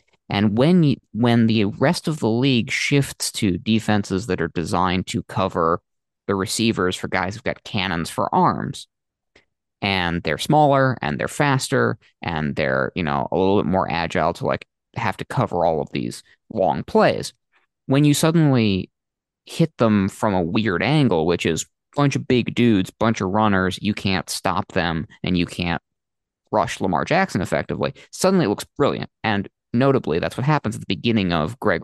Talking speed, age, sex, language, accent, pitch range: 180 wpm, 20-39, male, English, American, 95-125 Hz